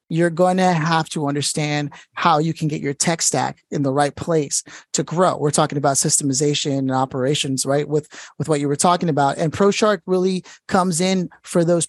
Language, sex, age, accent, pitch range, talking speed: English, male, 30-49, American, 140-175 Hz, 200 wpm